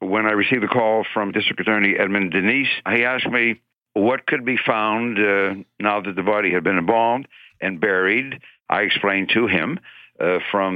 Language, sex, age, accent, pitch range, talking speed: English, male, 60-79, American, 75-100 Hz, 185 wpm